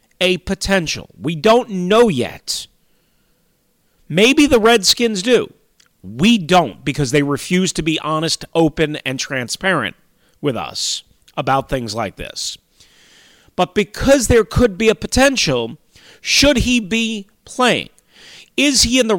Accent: American